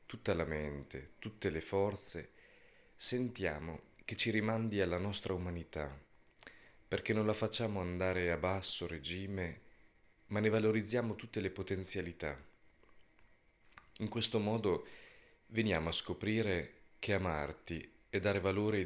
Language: Italian